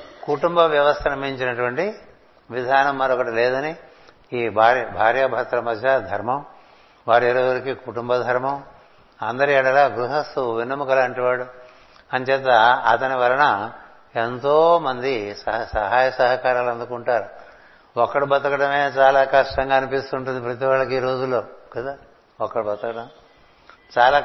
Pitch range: 120-140 Hz